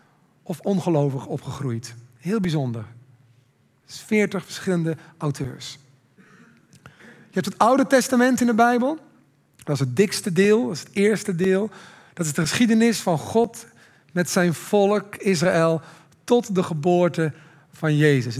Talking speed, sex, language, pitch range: 135 wpm, male, Dutch, 155-200 Hz